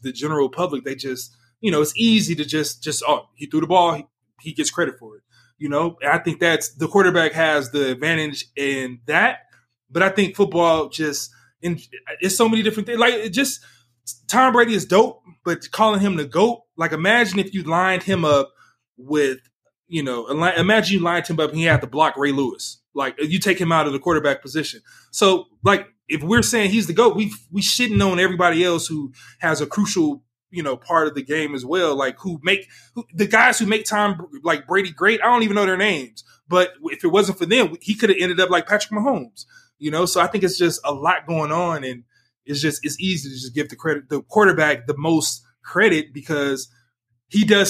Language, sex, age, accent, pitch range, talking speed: English, male, 20-39, American, 140-195 Hz, 220 wpm